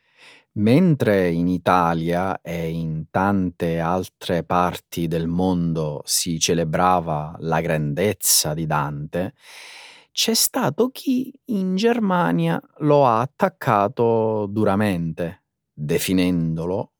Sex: male